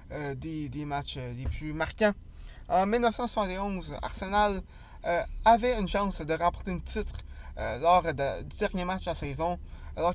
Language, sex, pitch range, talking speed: French, male, 150-200 Hz, 155 wpm